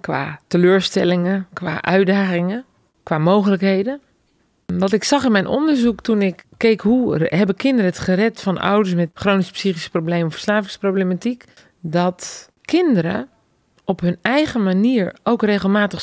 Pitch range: 165-205 Hz